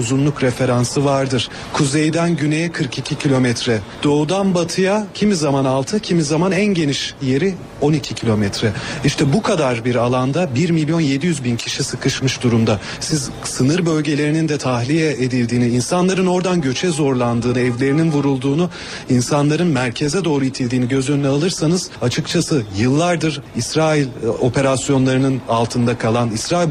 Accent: native